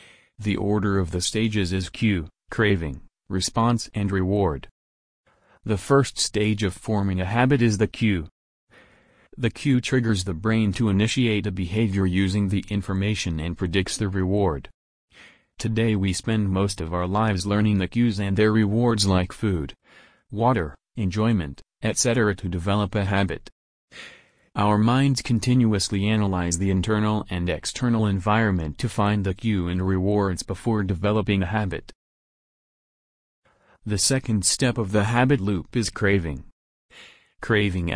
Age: 30-49